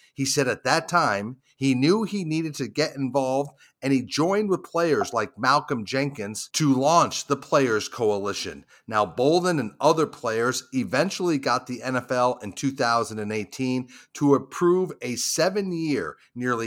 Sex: male